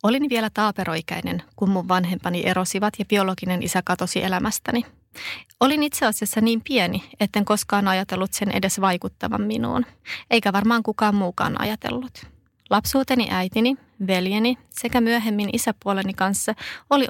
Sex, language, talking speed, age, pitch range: female, Finnish, 130 wpm, 30-49, 190-230 Hz